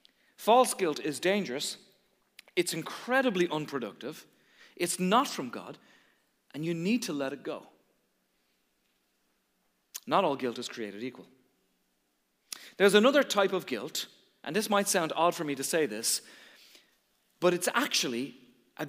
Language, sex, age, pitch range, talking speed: English, male, 40-59, 155-235 Hz, 135 wpm